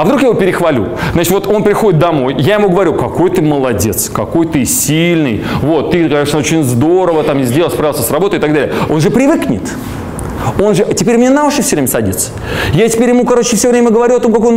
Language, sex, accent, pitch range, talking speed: Russian, male, native, 155-230 Hz, 225 wpm